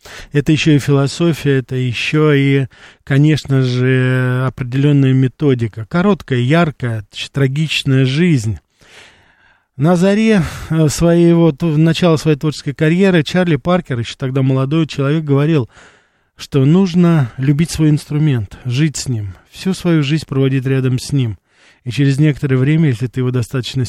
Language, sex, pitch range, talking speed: Russian, male, 125-155 Hz, 130 wpm